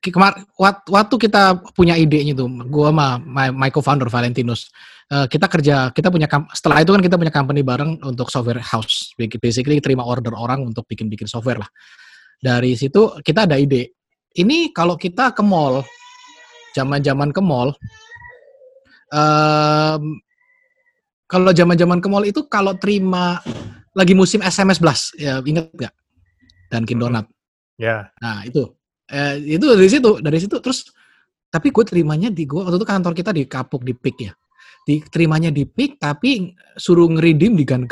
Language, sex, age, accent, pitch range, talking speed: Indonesian, male, 20-39, native, 130-190 Hz, 155 wpm